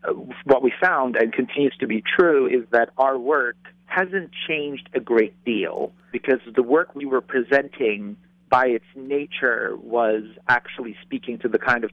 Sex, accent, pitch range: male, American, 110-180 Hz